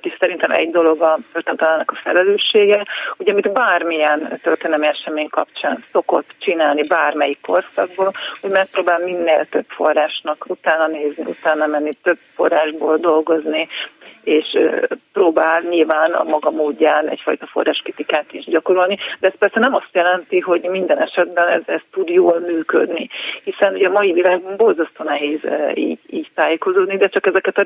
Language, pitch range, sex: Hungarian, 155-190 Hz, female